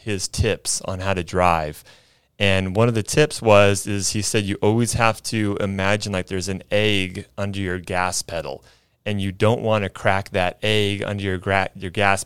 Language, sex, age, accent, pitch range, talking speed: English, male, 30-49, American, 100-115 Hz, 200 wpm